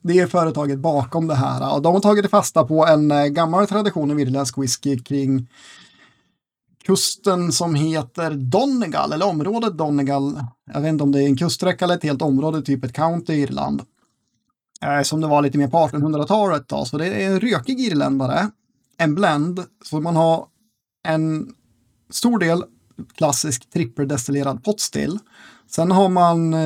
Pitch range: 135-170 Hz